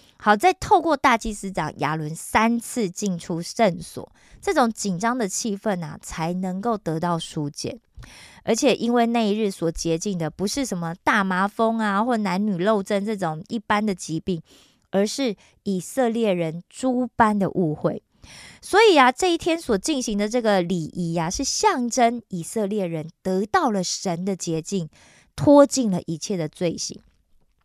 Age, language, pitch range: 20-39, Korean, 175-240 Hz